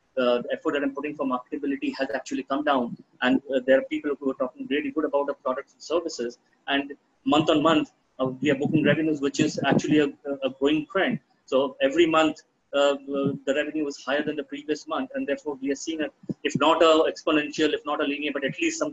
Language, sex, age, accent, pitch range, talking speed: English, male, 20-39, Indian, 135-155 Hz, 230 wpm